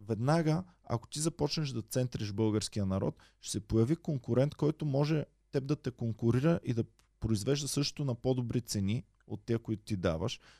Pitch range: 105-140 Hz